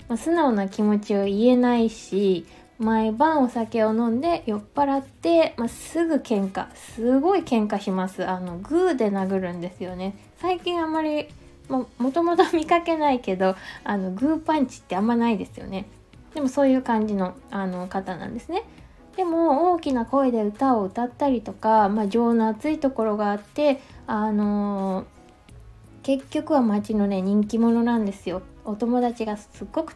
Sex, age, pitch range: female, 20-39, 200-280 Hz